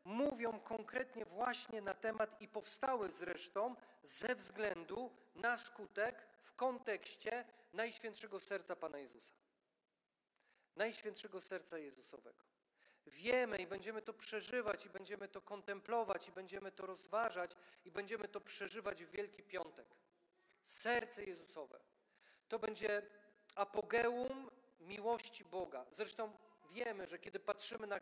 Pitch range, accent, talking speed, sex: 195-235 Hz, native, 115 wpm, male